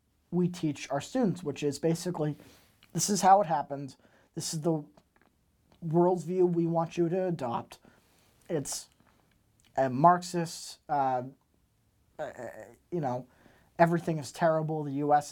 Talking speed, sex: 135 wpm, male